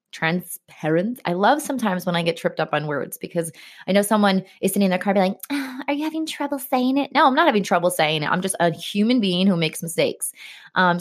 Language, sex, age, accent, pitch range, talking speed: English, female, 20-39, American, 175-220 Hz, 245 wpm